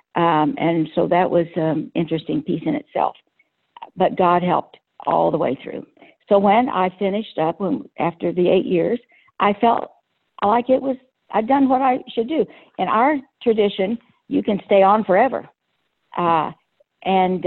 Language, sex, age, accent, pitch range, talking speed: English, female, 60-79, American, 185-235 Hz, 170 wpm